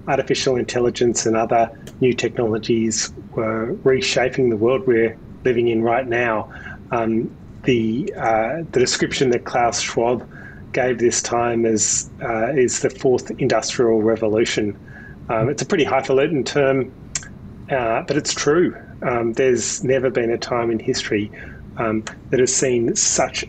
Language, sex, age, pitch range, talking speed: English, male, 30-49, 110-130 Hz, 145 wpm